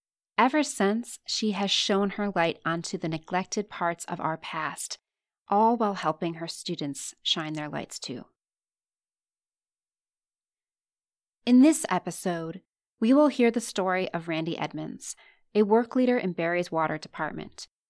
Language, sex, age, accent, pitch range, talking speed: English, female, 30-49, American, 170-225 Hz, 135 wpm